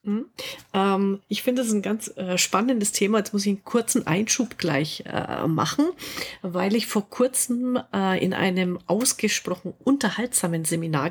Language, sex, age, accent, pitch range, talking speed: German, female, 40-59, German, 170-215 Hz, 155 wpm